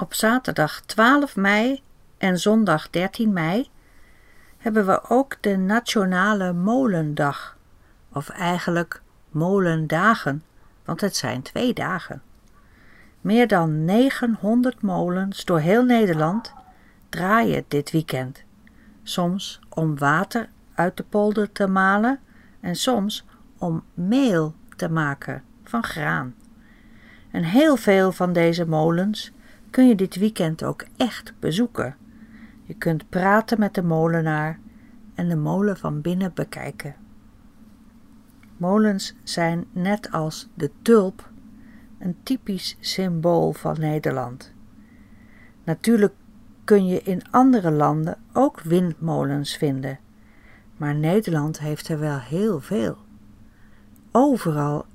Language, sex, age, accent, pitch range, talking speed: Dutch, female, 50-69, Dutch, 155-225 Hz, 110 wpm